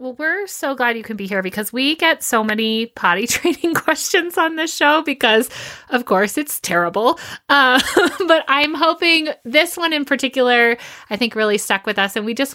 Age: 30-49